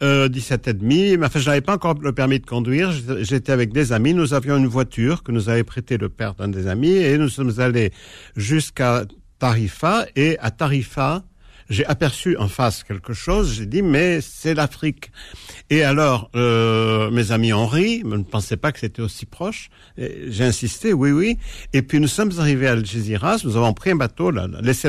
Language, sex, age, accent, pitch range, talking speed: French, male, 60-79, French, 110-140 Hz, 195 wpm